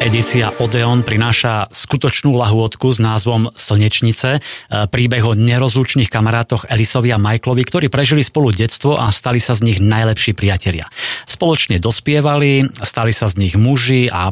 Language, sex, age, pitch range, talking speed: Slovak, male, 30-49, 105-125 Hz, 145 wpm